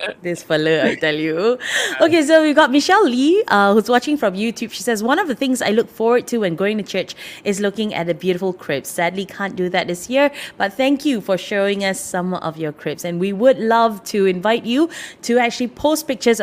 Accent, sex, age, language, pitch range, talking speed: Malaysian, female, 20-39, English, 180-250 Hz, 230 wpm